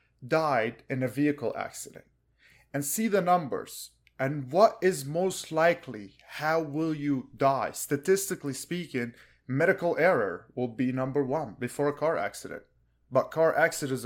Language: English